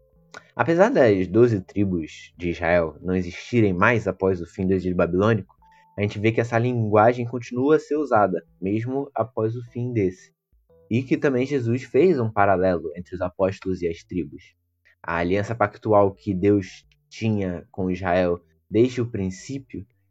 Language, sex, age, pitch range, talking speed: Portuguese, male, 20-39, 95-125 Hz, 160 wpm